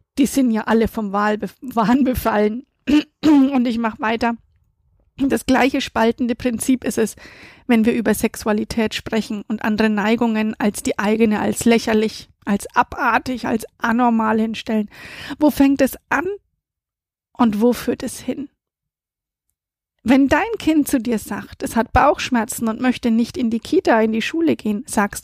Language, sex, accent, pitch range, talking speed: German, female, German, 220-260 Hz, 150 wpm